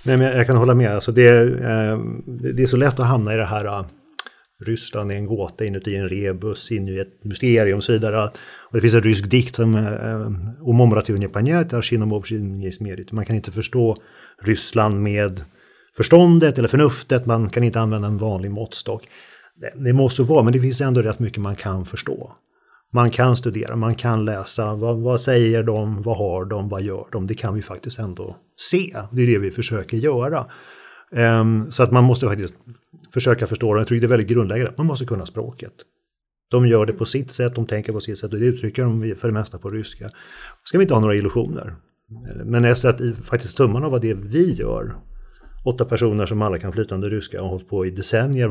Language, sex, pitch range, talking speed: Swedish, male, 105-120 Hz, 205 wpm